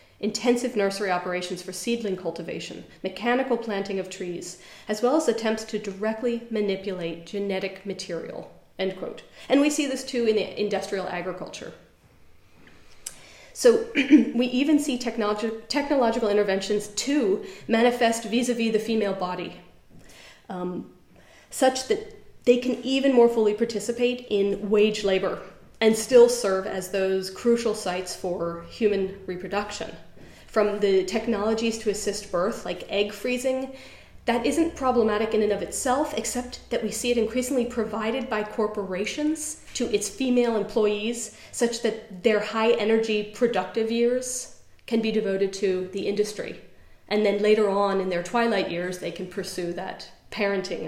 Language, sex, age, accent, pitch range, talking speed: Danish, female, 30-49, American, 195-240 Hz, 135 wpm